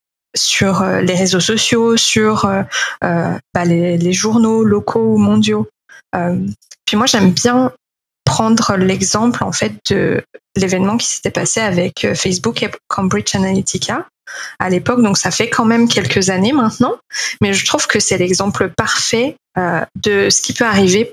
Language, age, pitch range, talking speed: French, 20-39, 185-220 Hz, 155 wpm